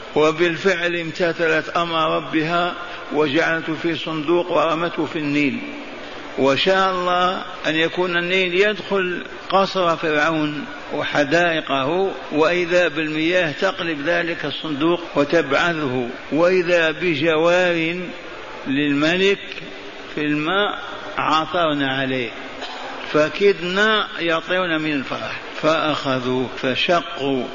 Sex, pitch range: male, 150-180 Hz